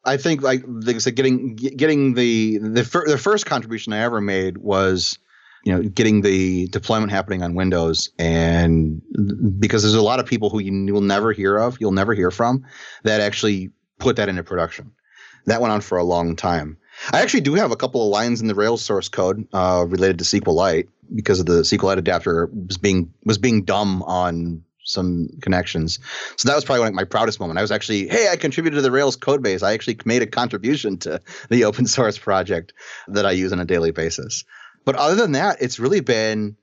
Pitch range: 90-110 Hz